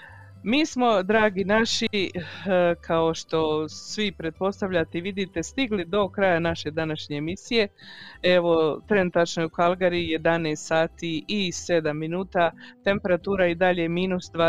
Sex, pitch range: female, 165-195 Hz